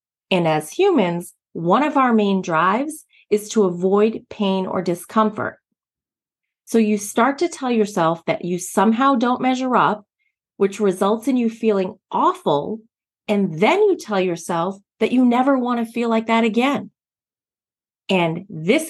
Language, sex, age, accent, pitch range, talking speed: English, female, 30-49, American, 195-270 Hz, 150 wpm